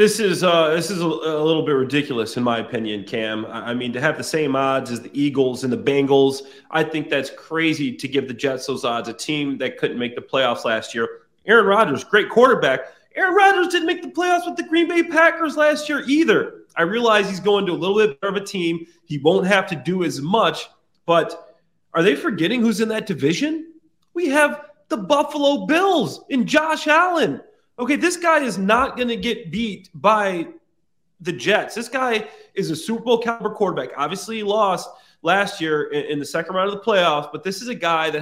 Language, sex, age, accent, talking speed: English, male, 30-49, American, 210 wpm